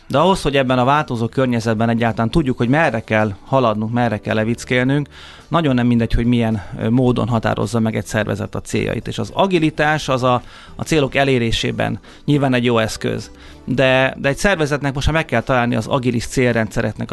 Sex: male